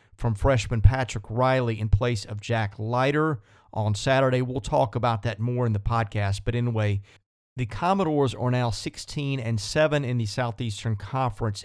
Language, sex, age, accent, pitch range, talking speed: English, male, 40-59, American, 110-145 Hz, 165 wpm